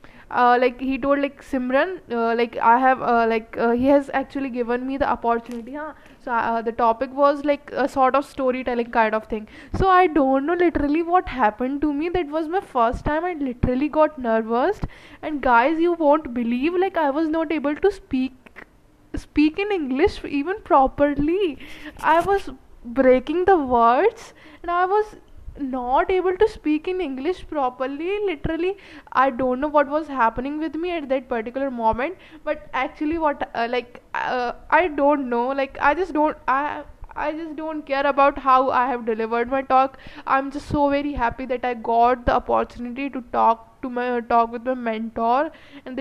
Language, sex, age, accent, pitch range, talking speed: English, female, 10-29, Indian, 245-305 Hz, 185 wpm